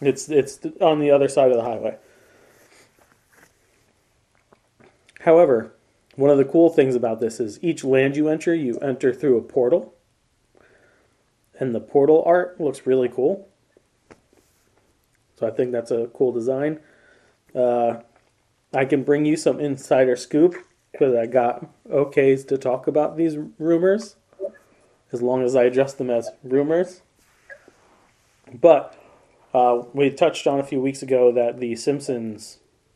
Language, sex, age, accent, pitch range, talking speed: English, male, 30-49, American, 120-145 Hz, 145 wpm